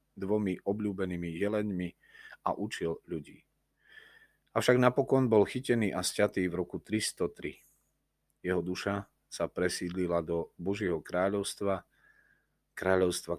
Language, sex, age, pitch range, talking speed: Slovak, male, 40-59, 85-105 Hz, 105 wpm